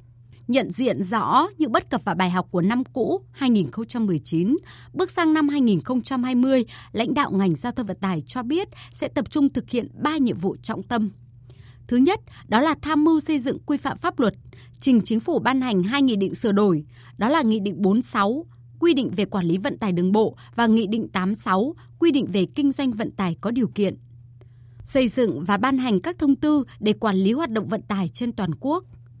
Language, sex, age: Vietnamese, female, 20-39